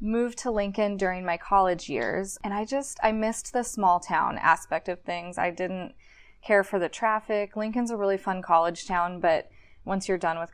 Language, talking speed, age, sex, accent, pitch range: English, 200 wpm, 20-39, female, American, 180-215 Hz